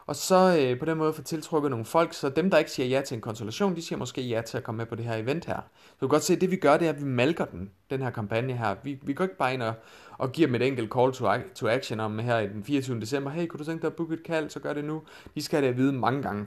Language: Danish